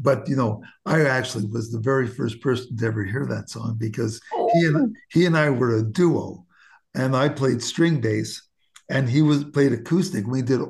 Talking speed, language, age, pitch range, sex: 200 wpm, English, 50-69, 120-155 Hz, male